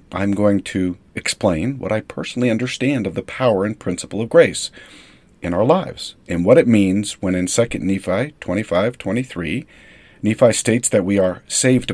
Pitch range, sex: 90-120 Hz, male